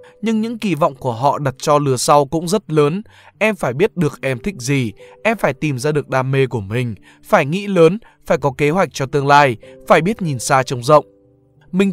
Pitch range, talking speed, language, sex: 130-180 Hz, 230 wpm, Vietnamese, male